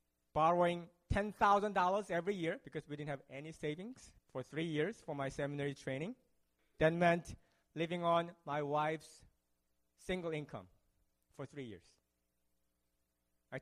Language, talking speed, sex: English, 130 wpm, male